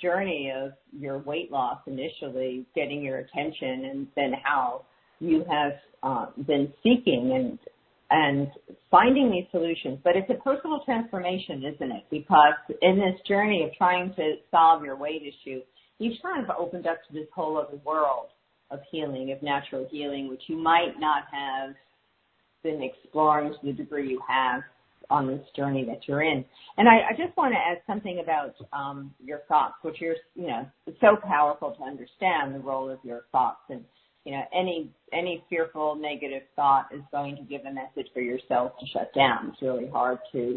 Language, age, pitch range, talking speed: English, 50-69, 135-175 Hz, 180 wpm